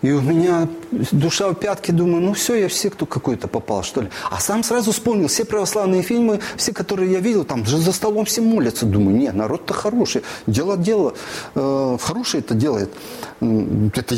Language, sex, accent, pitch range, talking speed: Russian, male, native, 130-205 Hz, 185 wpm